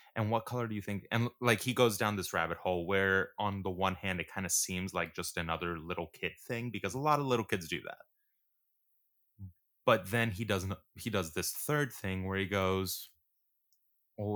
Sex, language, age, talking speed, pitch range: male, English, 20-39, 210 wpm, 90-115 Hz